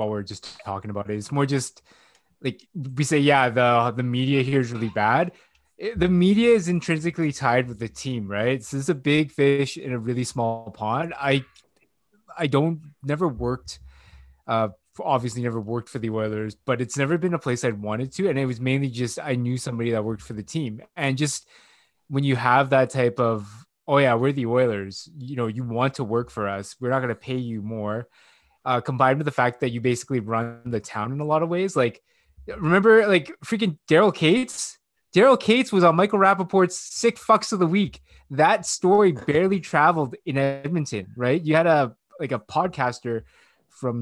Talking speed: 205 wpm